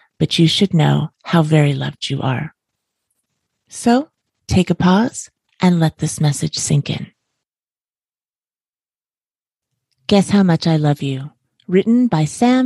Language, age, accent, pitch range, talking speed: English, 30-49, American, 130-165 Hz, 135 wpm